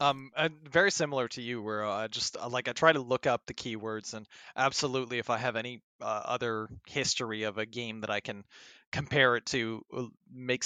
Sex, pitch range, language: male, 115-140 Hz, English